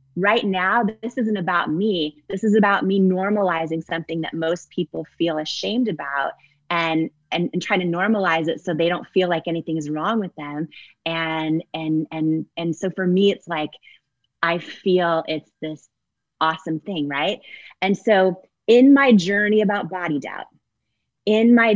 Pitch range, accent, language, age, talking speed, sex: 160-195 Hz, American, English, 20-39, 170 wpm, female